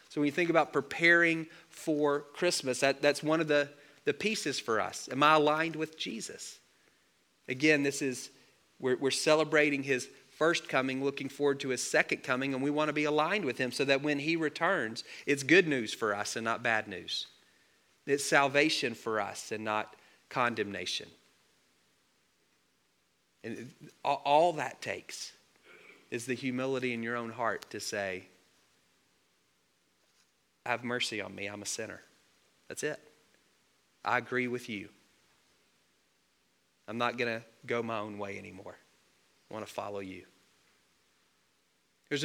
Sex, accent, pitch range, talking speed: male, American, 120-150 Hz, 150 wpm